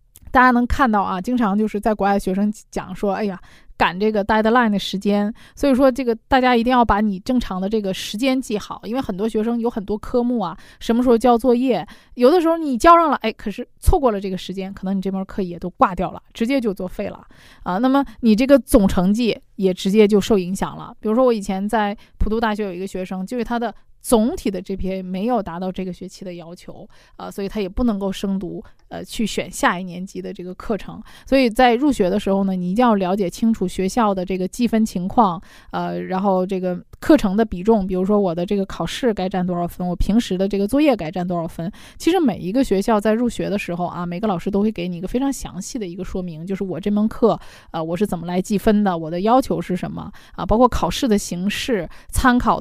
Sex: female